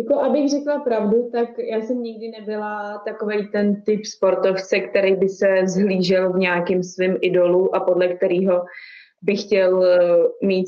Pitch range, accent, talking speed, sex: 185-220 Hz, native, 150 wpm, female